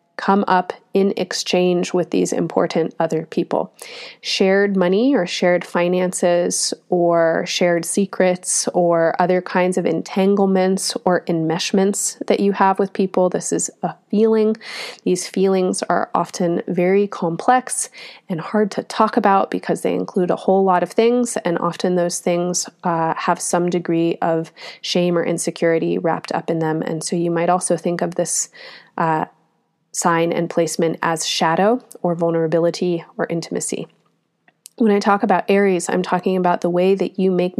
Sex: female